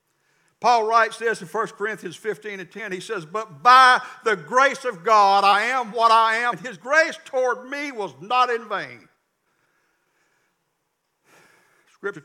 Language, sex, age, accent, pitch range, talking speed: English, male, 60-79, American, 145-205 Hz, 150 wpm